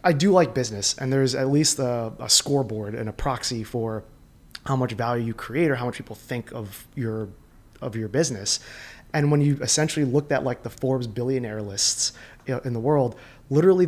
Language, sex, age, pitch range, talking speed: English, male, 20-39, 115-140 Hz, 195 wpm